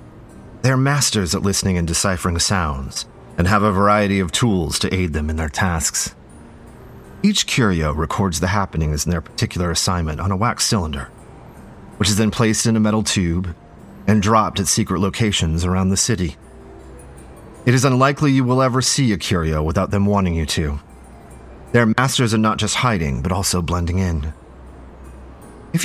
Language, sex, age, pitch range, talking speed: English, male, 30-49, 80-110 Hz, 170 wpm